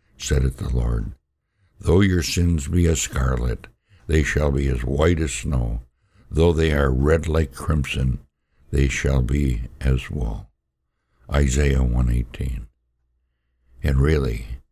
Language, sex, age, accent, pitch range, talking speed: English, male, 60-79, American, 65-70 Hz, 130 wpm